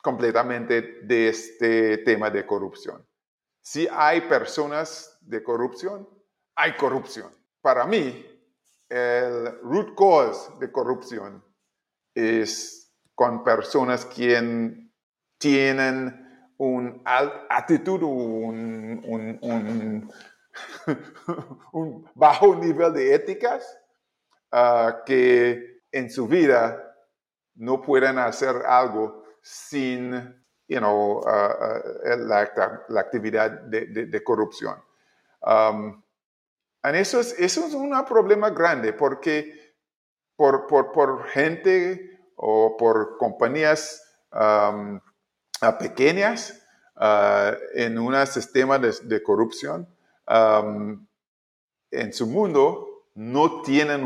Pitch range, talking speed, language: 115-160 Hz, 100 wpm, Spanish